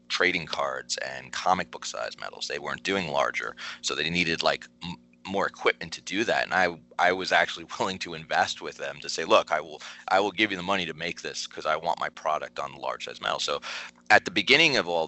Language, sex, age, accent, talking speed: English, male, 30-49, American, 235 wpm